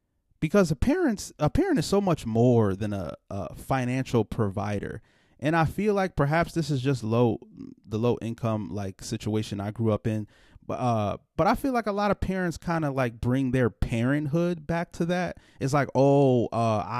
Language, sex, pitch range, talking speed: English, male, 115-160 Hz, 195 wpm